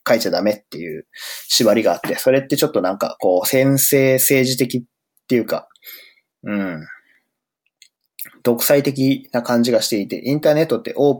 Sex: male